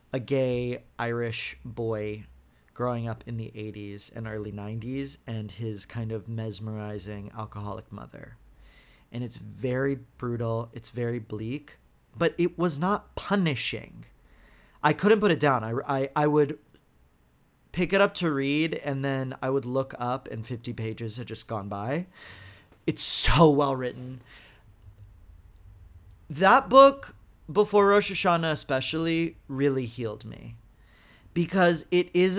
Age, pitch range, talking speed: 30-49, 110-150 Hz, 135 wpm